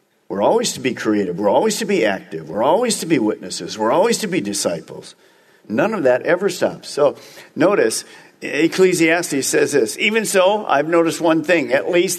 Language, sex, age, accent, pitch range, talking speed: English, male, 50-69, American, 140-195 Hz, 185 wpm